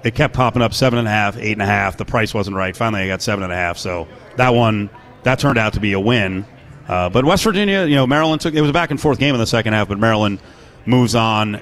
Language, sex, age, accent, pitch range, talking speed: English, male, 30-49, American, 105-130 Hz, 290 wpm